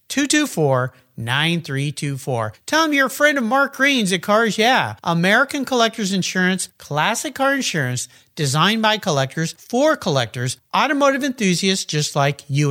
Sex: male